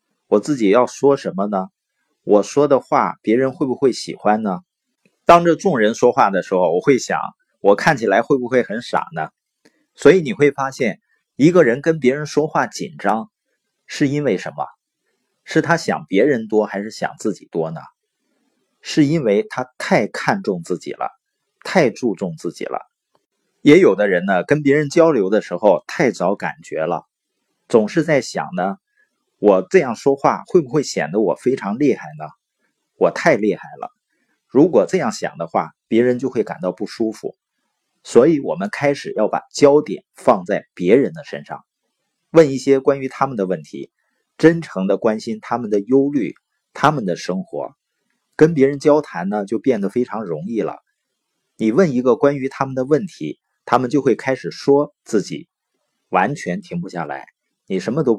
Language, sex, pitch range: Chinese, male, 105-155 Hz